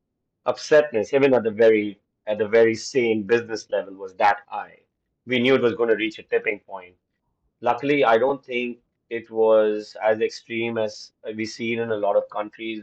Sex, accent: male, Indian